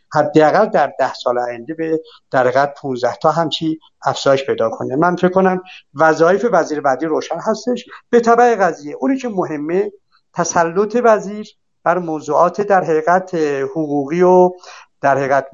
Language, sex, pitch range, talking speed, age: Persian, male, 145-200 Hz, 145 wpm, 60-79